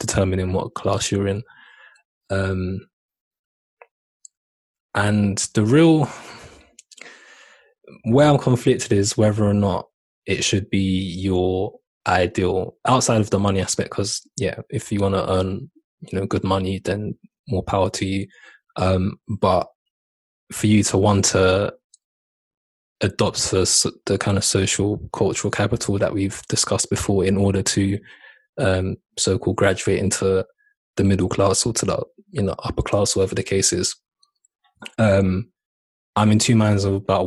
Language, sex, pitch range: English, male, 95-110 Hz